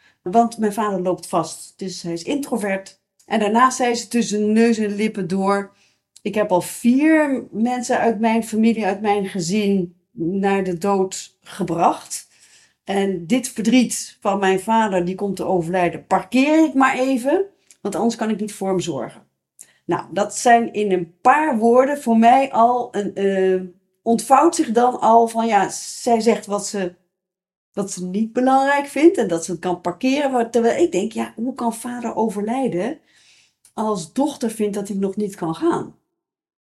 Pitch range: 185-240 Hz